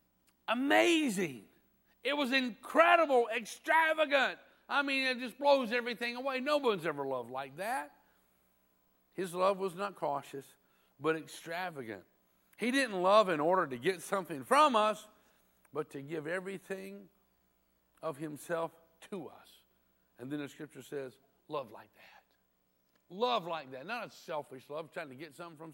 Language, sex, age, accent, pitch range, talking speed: English, male, 60-79, American, 120-195 Hz, 145 wpm